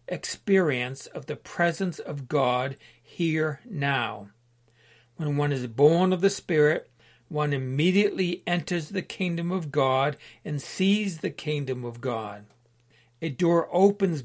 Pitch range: 125-170 Hz